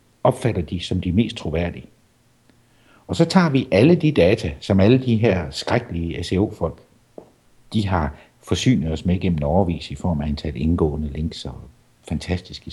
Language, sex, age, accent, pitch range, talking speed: Danish, male, 60-79, native, 85-115 Hz, 160 wpm